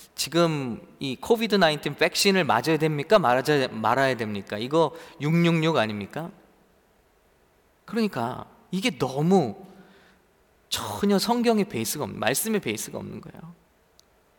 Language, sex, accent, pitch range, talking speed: English, male, Korean, 160-220 Hz, 90 wpm